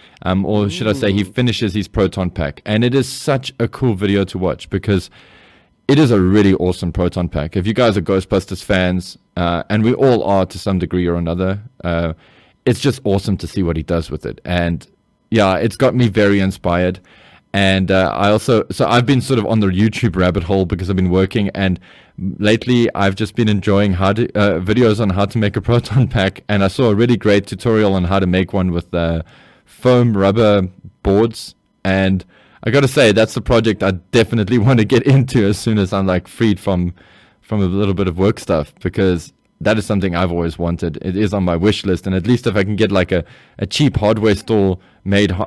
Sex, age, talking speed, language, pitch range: male, 20-39, 220 wpm, English, 90-115 Hz